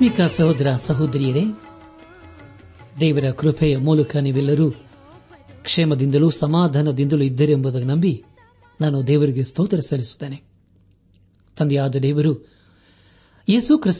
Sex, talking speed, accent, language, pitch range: male, 75 wpm, native, Kannada, 95-155 Hz